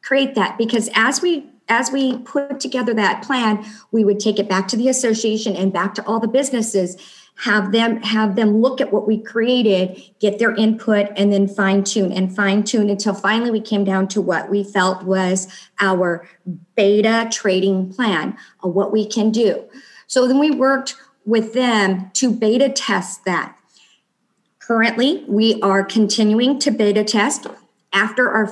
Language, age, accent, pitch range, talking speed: English, 50-69, American, 200-245 Hz, 170 wpm